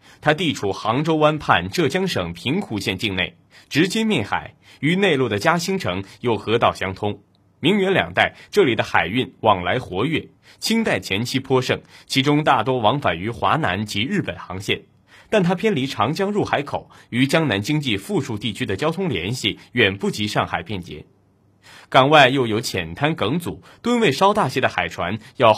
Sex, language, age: male, Chinese, 30-49